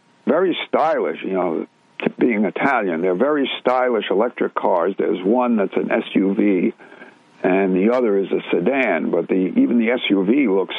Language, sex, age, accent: English, male, 60-79, American